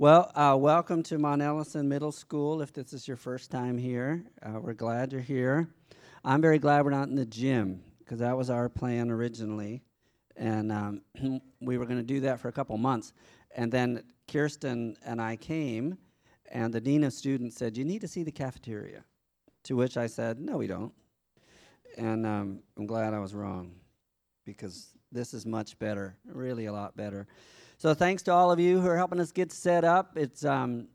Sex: male